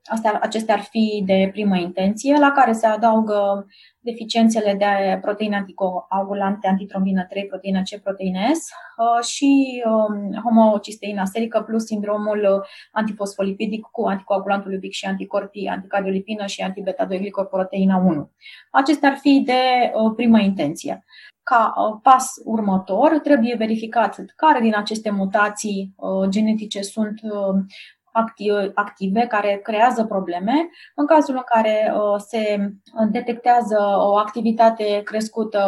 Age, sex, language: 20-39, female, Romanian